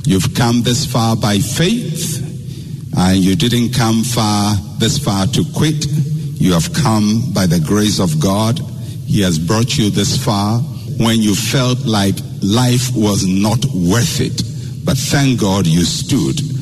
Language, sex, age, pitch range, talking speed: English, male, 60-79, 115-145 Hz, 155 wpm